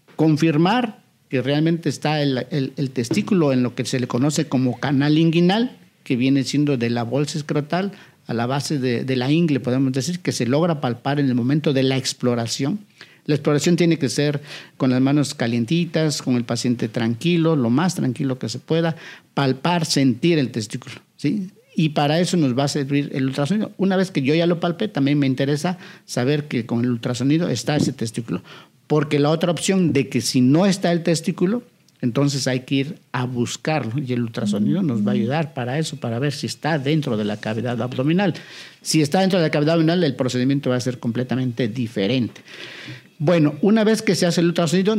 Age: 50-69